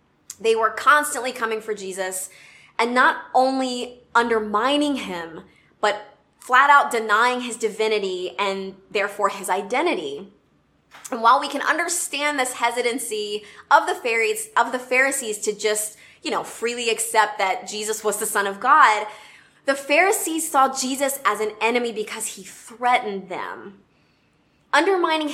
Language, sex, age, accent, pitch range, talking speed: English, female, 20-39, American, 210-260 Hz, 135 wpm